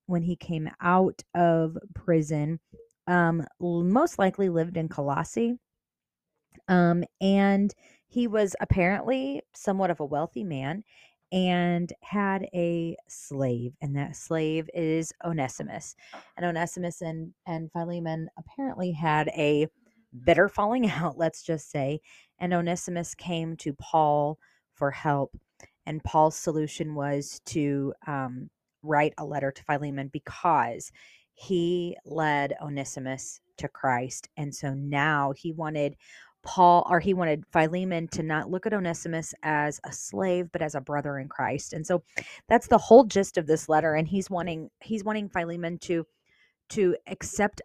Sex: female